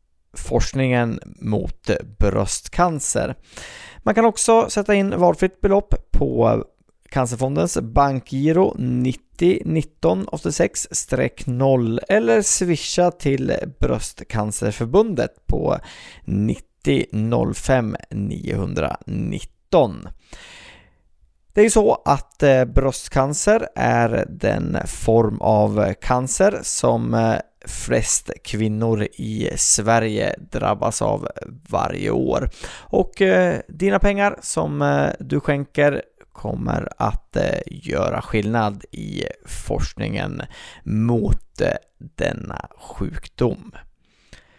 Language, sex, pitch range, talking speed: Swedish, male, 110-175 Hz, 80 wpm